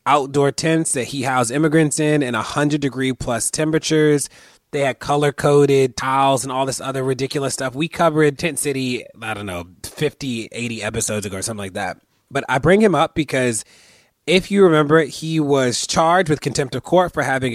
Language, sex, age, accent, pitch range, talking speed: English, male, 30-49, American, 115-150 Hz, 200 wpm